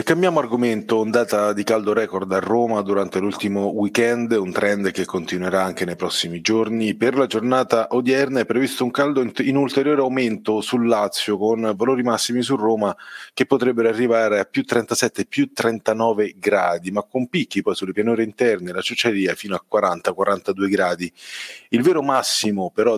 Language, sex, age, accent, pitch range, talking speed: Italian, male, 30-49, native, 100-125 Hz, 170 wpm